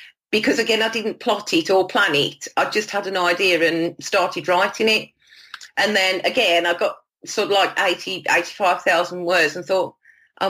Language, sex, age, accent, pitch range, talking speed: English, female, 40-59, British, 175-215 Hz, 185 wpm